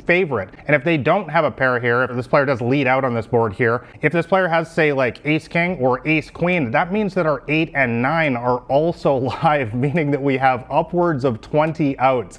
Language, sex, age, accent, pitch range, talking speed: English, male, 30-49, American, 120-160 Hz, 230 wpm